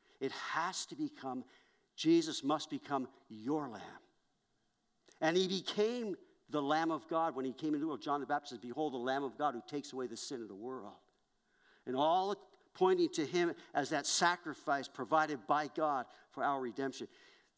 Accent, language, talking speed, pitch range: American, English, 180 wpm, 135-220 Hz